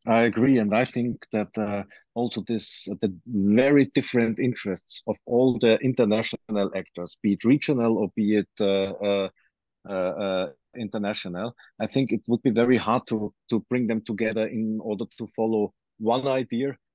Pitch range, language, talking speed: 105-120 Hz, German, 165 wpm